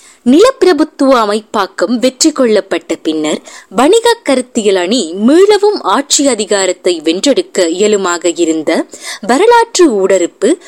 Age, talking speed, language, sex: 20-39, 90 wpm, Tamil, female